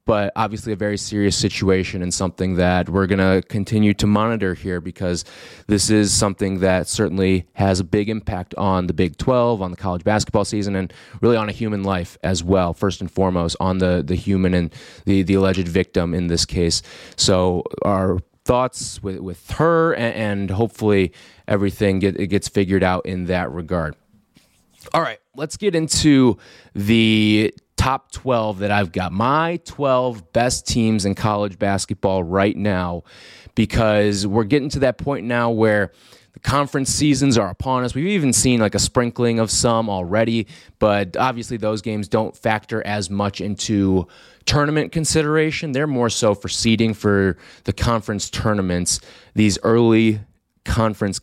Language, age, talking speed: English, 20-39, 165 wpm